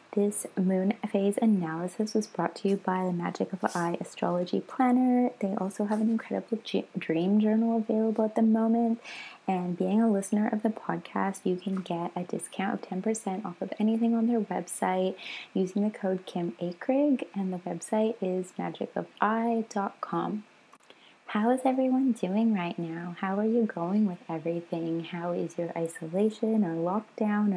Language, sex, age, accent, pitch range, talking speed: English, female, 20-39, American, 175-220 Hz, 165 wpm